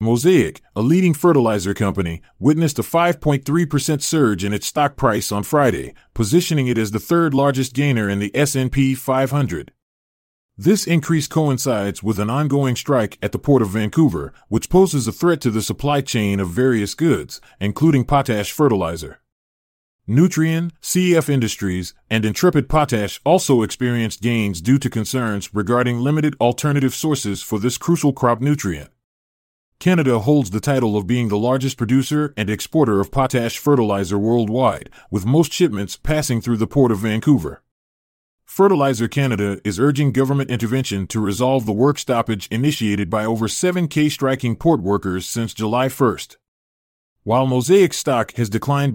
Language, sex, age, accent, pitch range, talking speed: English, male, 30-49, American, 105-145 Hz, 150 wpm